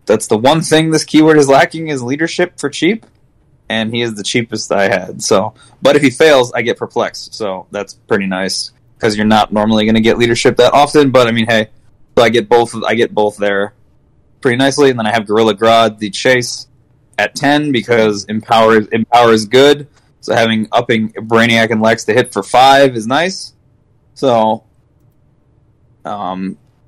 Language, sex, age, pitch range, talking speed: English, male, 20-39, 110-125 Hz, 190 wpm